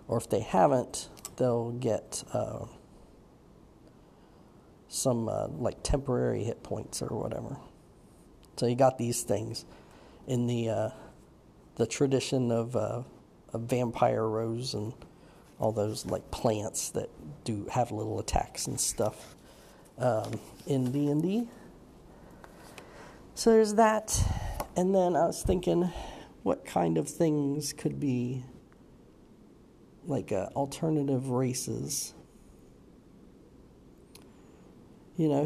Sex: male